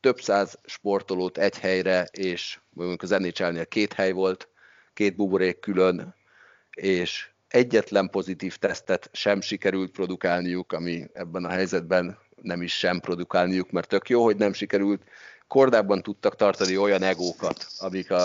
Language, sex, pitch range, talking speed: Hungarian, male, 85-95 Hz, 140 wpm